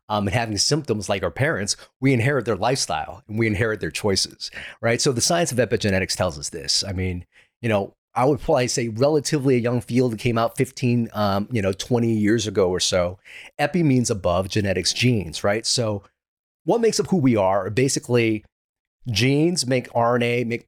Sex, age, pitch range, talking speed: male, 30-49, 105-140 Hz, 195 wpm